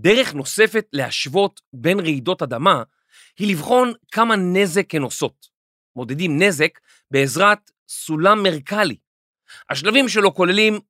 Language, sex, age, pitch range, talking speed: Hebrew, male, 40-59, 140-205 Hz, 110 wpm